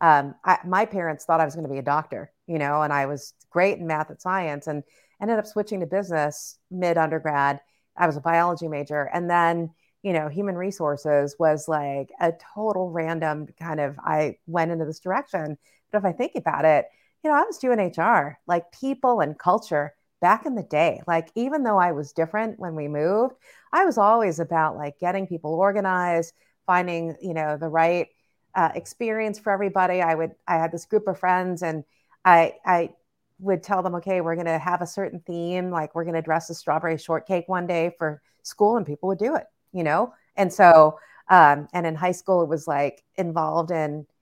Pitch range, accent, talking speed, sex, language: 155-190 Hz, American, 205 wpm, female, English